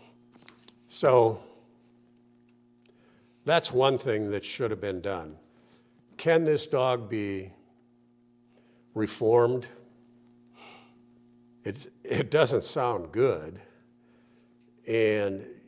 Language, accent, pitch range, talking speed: English, American, 95-120 Hz, 75 wpm